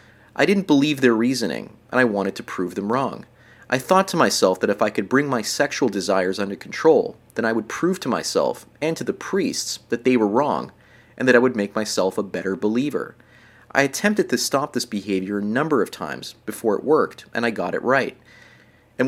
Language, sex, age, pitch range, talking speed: English, male, 30-49, 110-130 Hz, 215 wpm